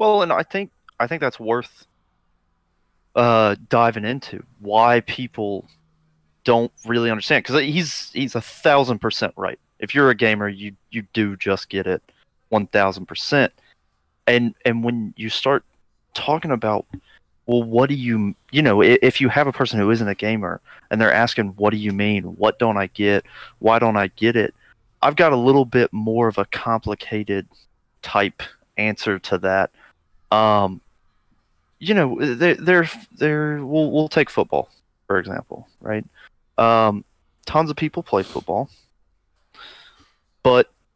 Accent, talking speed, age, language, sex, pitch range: American, 155 wpm, 30-49, English, male, 100-130 Hz